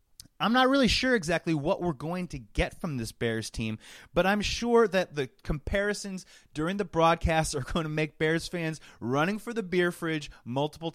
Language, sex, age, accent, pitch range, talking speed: English, male, 30-49, American, 135-195 Hz, 190 wpm